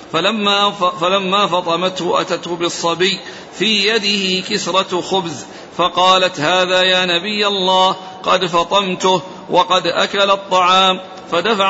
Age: 50-69